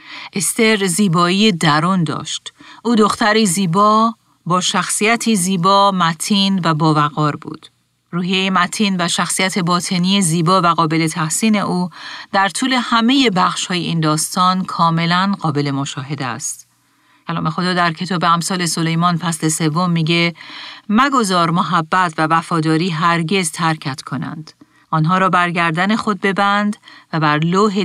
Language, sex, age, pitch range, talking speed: Persian, female, 40-59, 160-200 Hz, 125 wpm